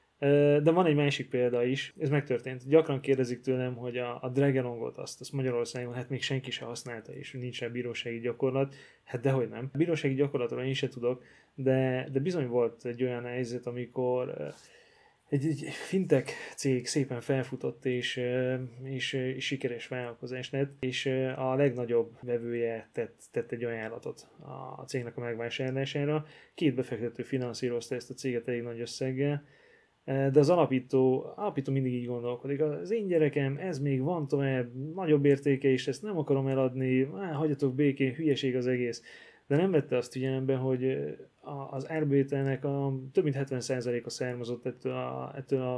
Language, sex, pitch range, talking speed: Hungarian, male, 125-140 Hz, 155 wpm